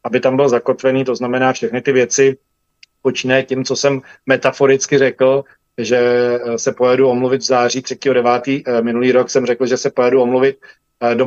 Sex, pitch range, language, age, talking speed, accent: male, 120-135 Hz, Czech, 40-59, 170 wpm, native